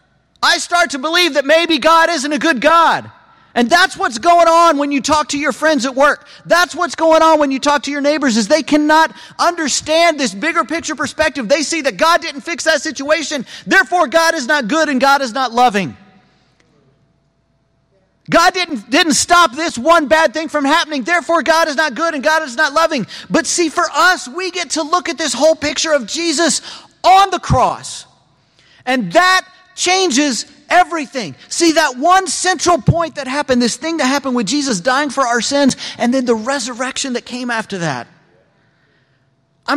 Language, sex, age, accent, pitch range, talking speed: English, male, 40-59, American, 235-325 Hz, 190 wpm